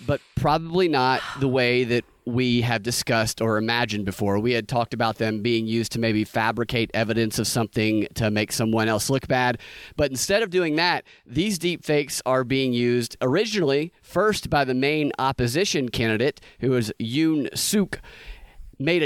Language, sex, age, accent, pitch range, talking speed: English, male, 30-49, American, 120-160 Hz, 165 wpm